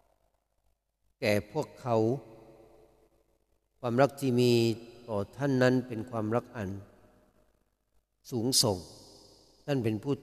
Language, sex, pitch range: Thai, male, 105-135 Hz